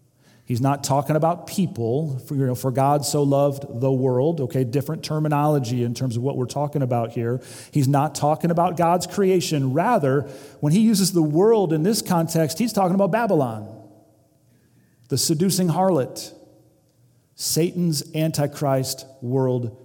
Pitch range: 125-165 Hz